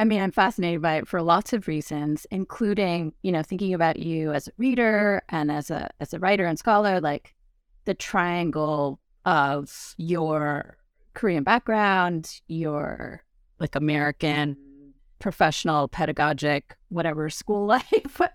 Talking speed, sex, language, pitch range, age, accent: 135 wpm, female, English, 155-210 Hz, 30-49, American